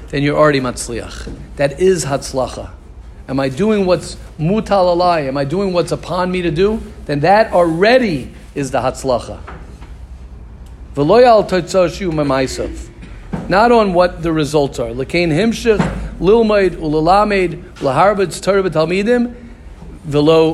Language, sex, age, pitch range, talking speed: English, male, 50-69, 140-205 Hz, 125 wpm